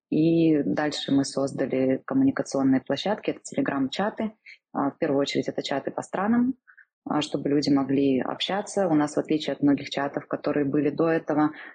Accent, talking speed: native, 155 wpm